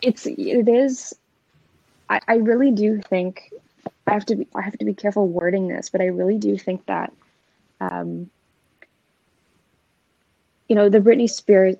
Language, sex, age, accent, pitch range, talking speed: English, female, 20-39, American, 175-205 Hz, 160 wpm